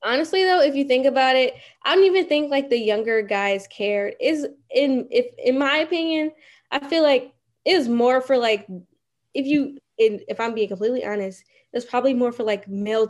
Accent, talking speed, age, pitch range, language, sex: American, 195 wpm, 10-29, 195-255 Hz, English, female